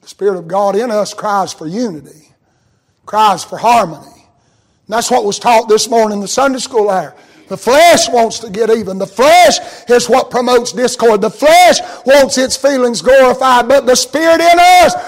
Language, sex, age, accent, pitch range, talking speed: English, male, 50-69, American, 140-230 Hz, 185 wpm